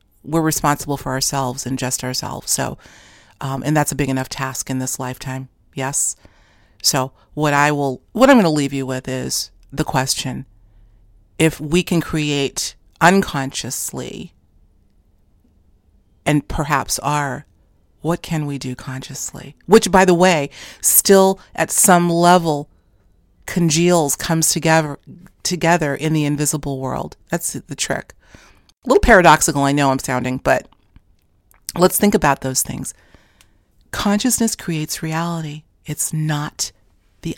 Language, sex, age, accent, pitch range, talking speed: English, female, 40-59, American, 125-160 Hz, 135 wpm